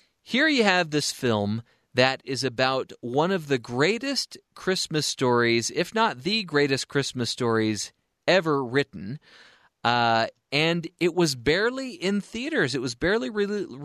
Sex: male